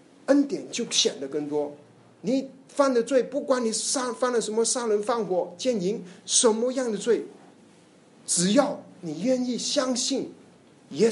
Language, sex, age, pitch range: Chinese, male, 50-69, 165-265 Hz